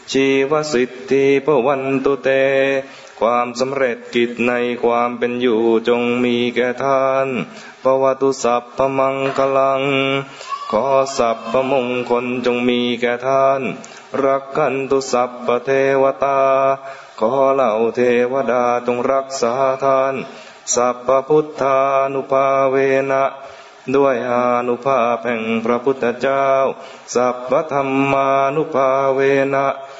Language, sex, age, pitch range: English, male, 20-39, 120-135 Hz